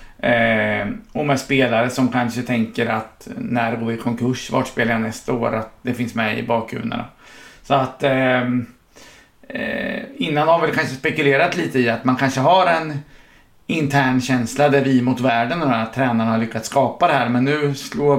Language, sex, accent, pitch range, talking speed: English, male, Swedish, 120-140 Hz, 180 wpm